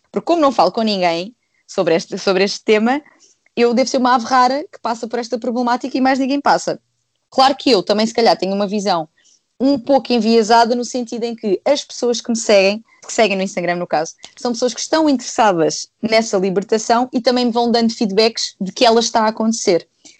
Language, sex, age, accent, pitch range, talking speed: Portuguese, female, 20-39, Brazilian, 195-250 Hz, 210 wpm